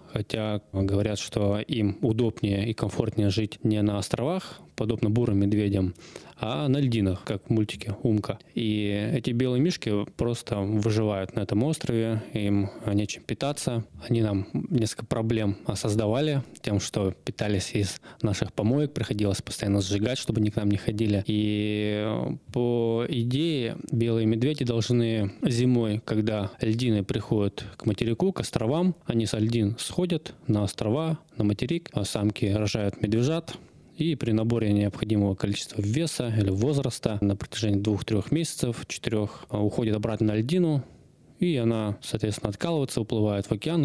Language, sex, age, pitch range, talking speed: Russian, male, 20-39, 105-125 Hz, 140 wpm